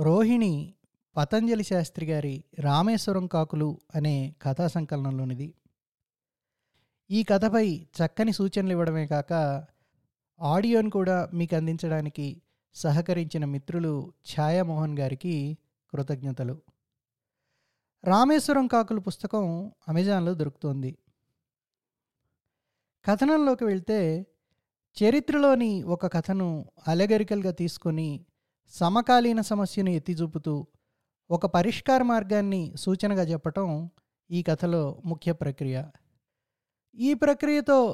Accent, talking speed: native, 80 wpm